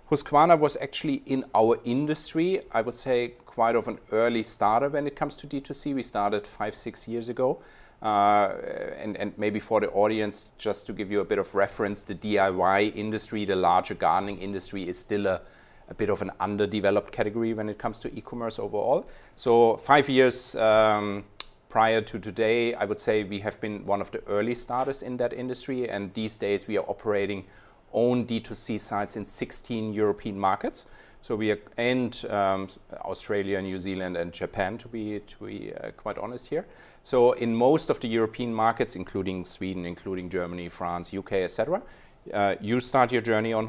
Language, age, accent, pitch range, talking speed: English, 30-49, German, 100-120 Hz, 185 wpm